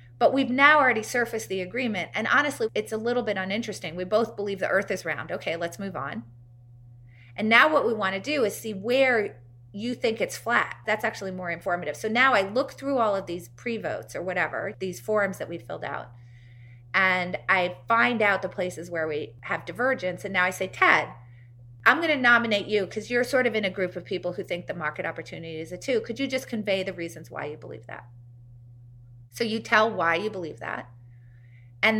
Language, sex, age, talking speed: English, female, 30-49, 215 wpm